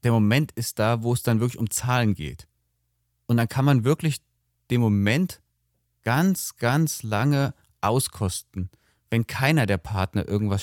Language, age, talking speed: German, 30-49, 150 wpm